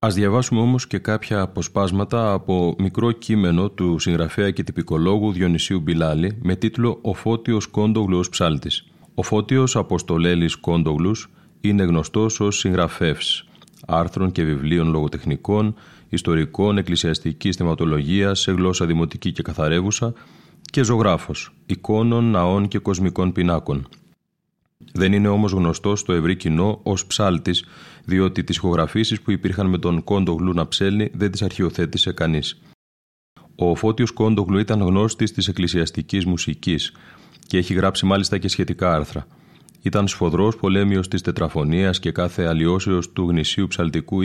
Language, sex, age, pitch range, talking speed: Greek, male, 30-49, 85-100 Hz, 130 wpm